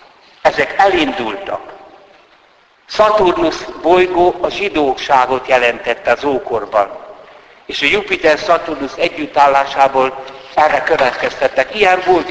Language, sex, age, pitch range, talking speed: Hungarian, male, 60-79, 120-165 Hz, 90 wpm